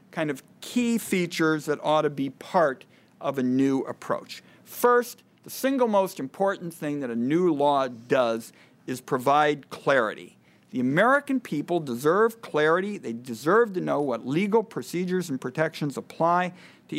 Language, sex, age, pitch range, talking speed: English, male, 50-69, 135-185 Hz, 150 wpm